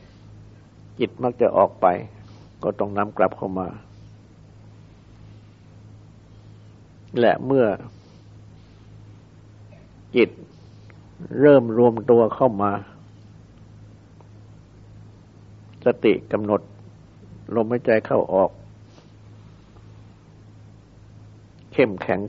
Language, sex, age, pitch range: Thai, male, 60-79, 105-110 Hz